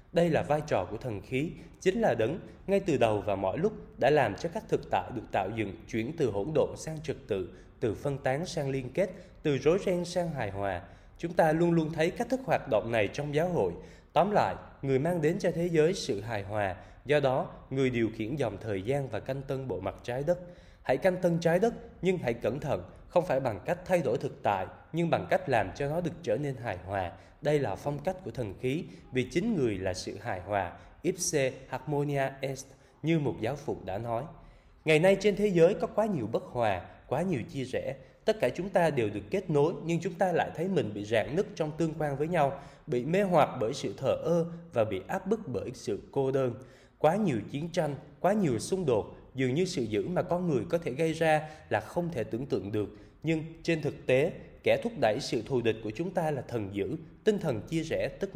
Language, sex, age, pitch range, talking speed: Vietnamese, male, 20-39, 125-175 Hz, 235 wpm